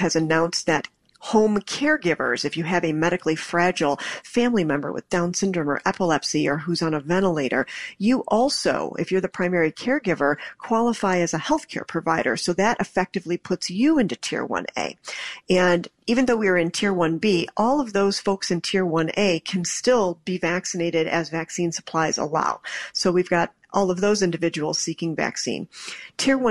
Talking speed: 175 wpm